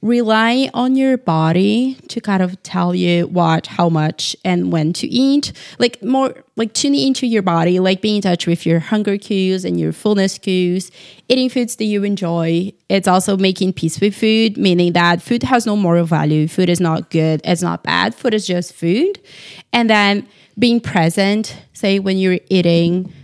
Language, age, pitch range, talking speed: English, 20-39, 170-220 Hz, 185 wpm